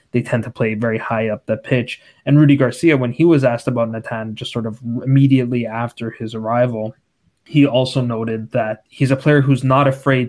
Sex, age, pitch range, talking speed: male, 20-39, 115-135 Hz, 205 wpm